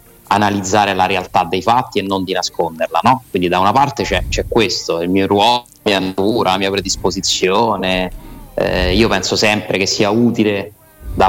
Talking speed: 160 wpm